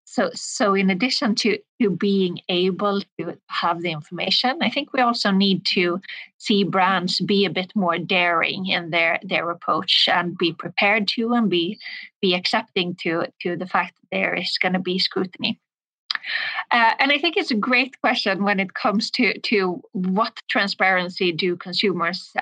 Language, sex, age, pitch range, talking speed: English, female, 20-39, 180-220 Hz, 175 wpm